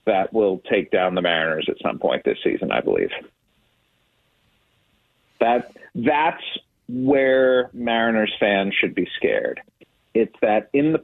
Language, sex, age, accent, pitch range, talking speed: English, male, 40-59, American, 95-120 Hz, 135 wpm